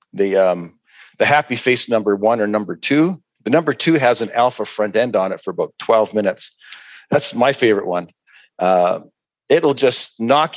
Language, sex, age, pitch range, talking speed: English, male, 50-69, 110-145 Hz, 180 wpm